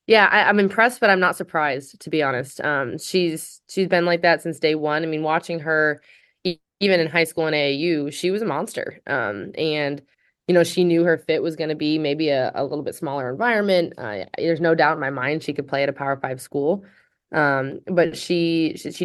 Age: 20-39